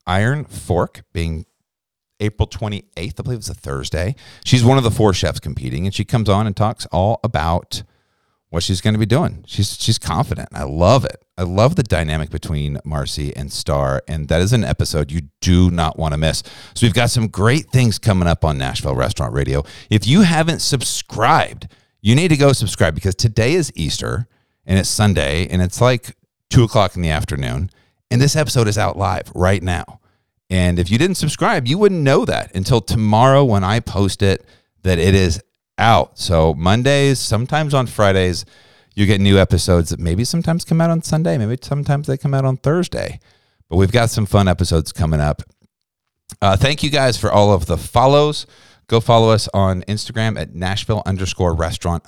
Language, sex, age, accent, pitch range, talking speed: English, male, 50-69, American, 90-120 Hz, 195 wpm